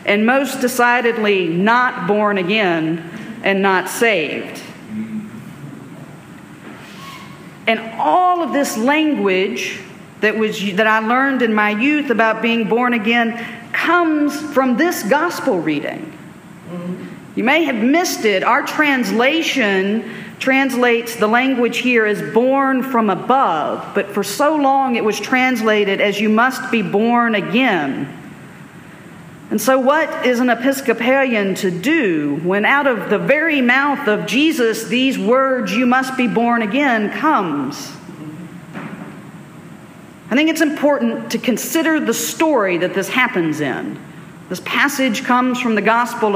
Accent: American